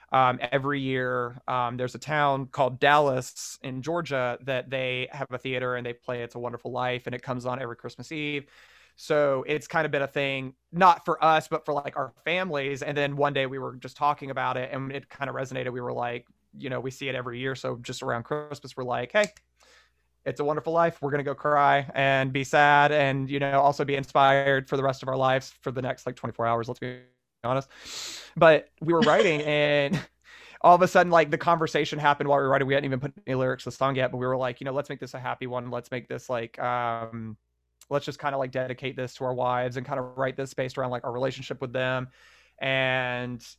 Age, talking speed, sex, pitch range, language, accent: 20-39, 245 wpm, male, 125-140 Hz, English, American